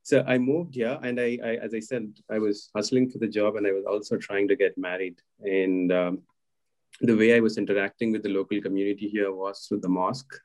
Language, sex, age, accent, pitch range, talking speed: English, male, 30-49, Indian, 95-110 Hz, 235 wpm